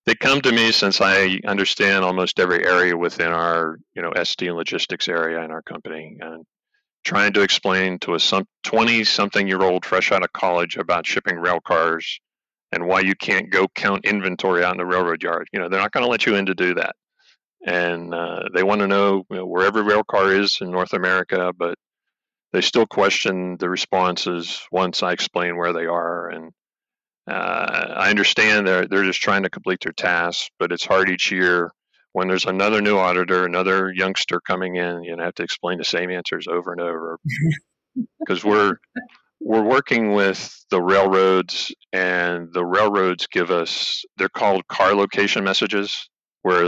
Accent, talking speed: American, 185 wpm